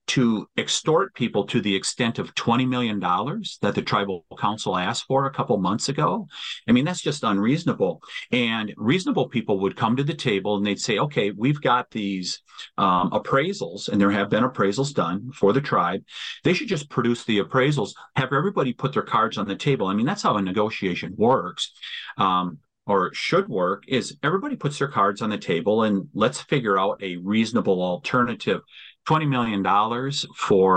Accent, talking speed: American, 185 wpm